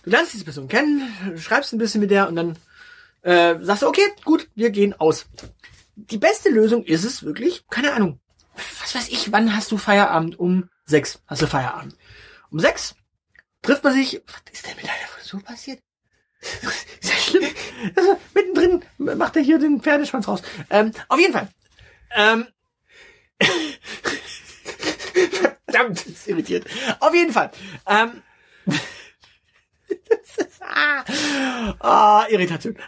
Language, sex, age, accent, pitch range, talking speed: German, male, 30-49, German, 195-290 Hz, 145 wpm